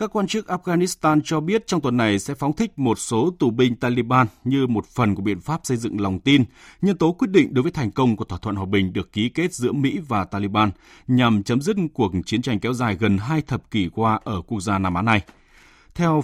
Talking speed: 250 wpm